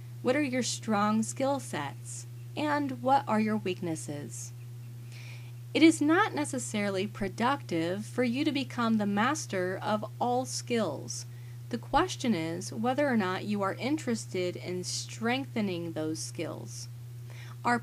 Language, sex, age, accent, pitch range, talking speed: English, female, 30-49, American, 120-200 Hz, 130 wpm